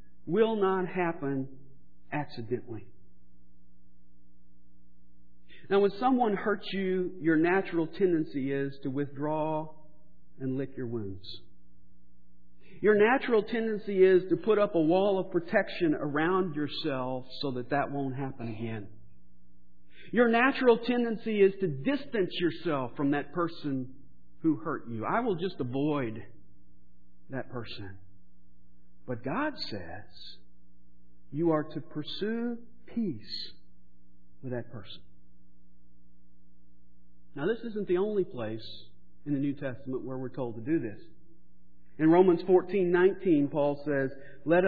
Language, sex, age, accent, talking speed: English, male, 50-69, American, 120 wpm